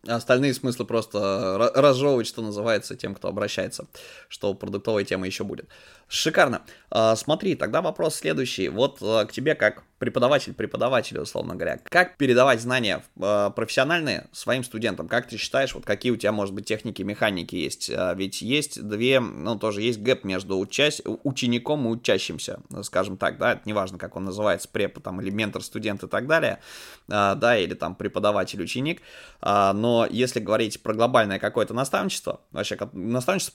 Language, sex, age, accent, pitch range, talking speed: Russian, male, 20-39, native, 100-125 Hz, 155 wpm